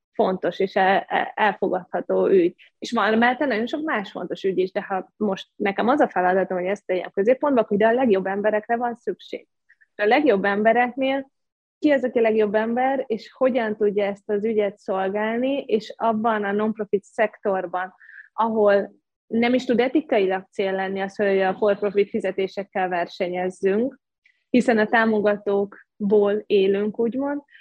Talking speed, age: 155 wpm, 20-39